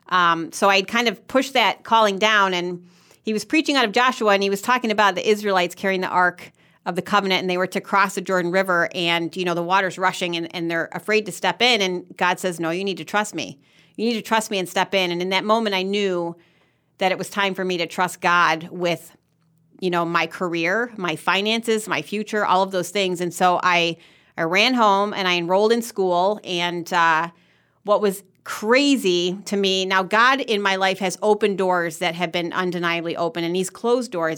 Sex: female